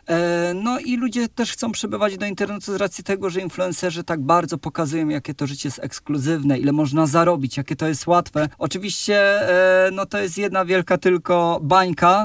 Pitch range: 155-185 Hz